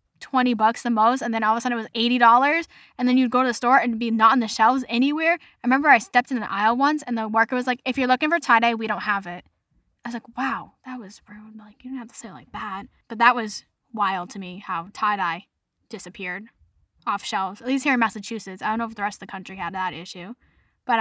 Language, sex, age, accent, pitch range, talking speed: English, female, 10-29, American, 205-260 Hz, 265 wpm